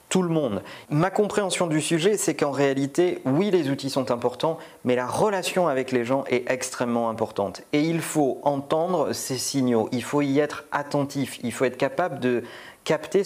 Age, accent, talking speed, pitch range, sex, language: 40-59, French, 185 wpm, 130-180 Hz, male, French